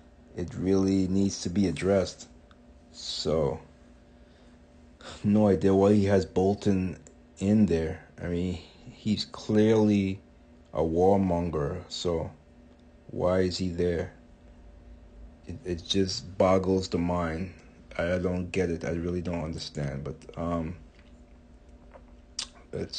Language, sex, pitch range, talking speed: English, male, 80-105 Hz, 110 wpm